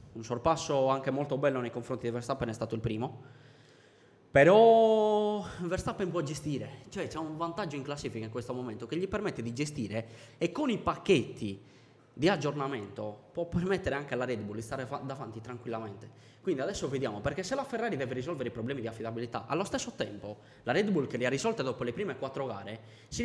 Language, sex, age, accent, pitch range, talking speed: Italian, male, 20-39, native, 120-175 Hz, 195 wpm